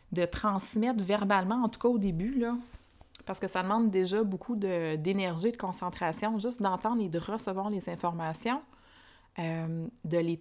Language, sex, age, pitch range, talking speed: French, female, 20-39, 175-220 Hz, 165 wpm